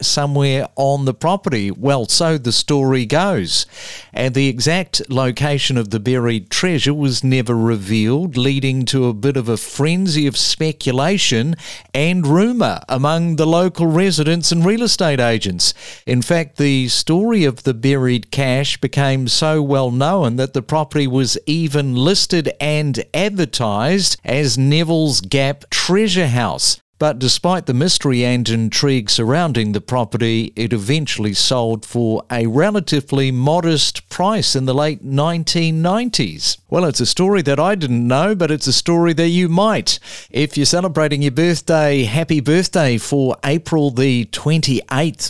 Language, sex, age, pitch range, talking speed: English, male, 50-69, 125-165 Hz, 145 wpm